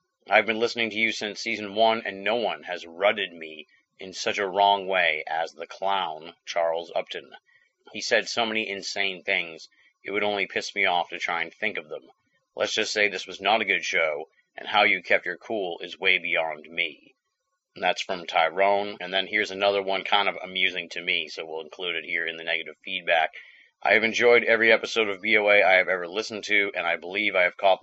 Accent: American